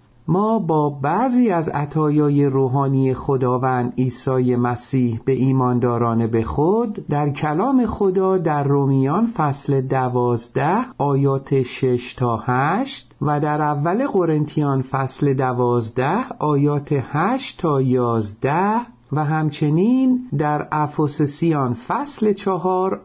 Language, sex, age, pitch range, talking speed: Persian, male, 50-69, 135-195 Hz, 105 wpm